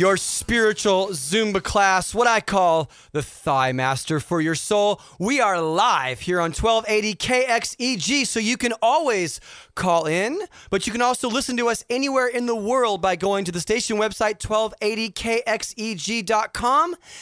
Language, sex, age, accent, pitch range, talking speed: English, male, 30-49, American, 180-225 Hz, 150 wpm